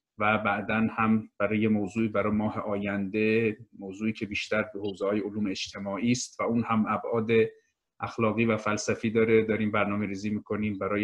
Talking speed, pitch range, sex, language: 165 wpm, 100-115 Hz, male, Persian